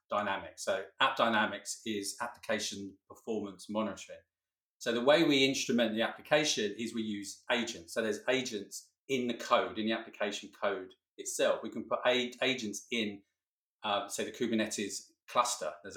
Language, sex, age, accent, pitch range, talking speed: English, male, 40-59, British, 105-135 Hz, 155 wpm